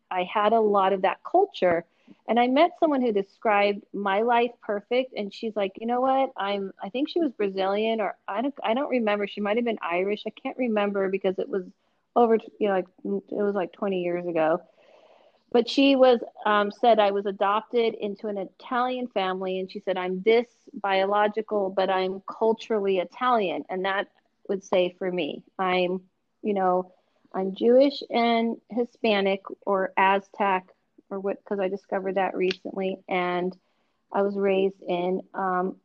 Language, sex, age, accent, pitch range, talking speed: English, female, 40-59, American, 190-230 Hz, 175 wpm